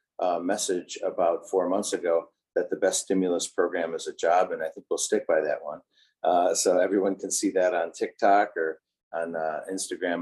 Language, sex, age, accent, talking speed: English, male, 50-69, American, 200 wpm